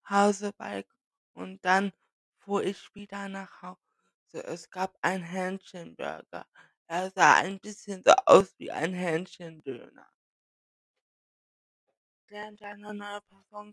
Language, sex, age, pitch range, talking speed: German, female, 20-39, 185-205 Hz, 115 wpm